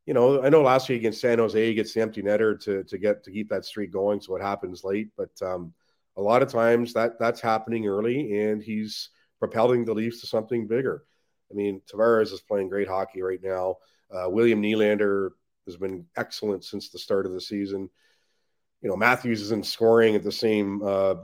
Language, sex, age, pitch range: English, male, 40-59, 95-110 Hz